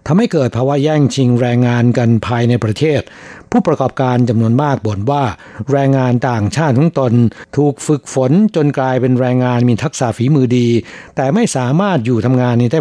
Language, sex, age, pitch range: Thai, male, 60-79, 120-145 Hz